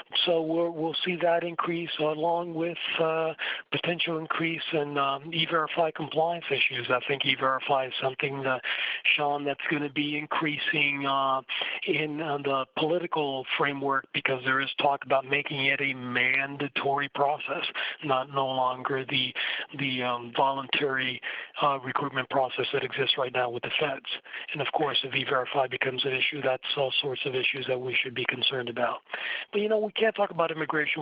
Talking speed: 170 wpm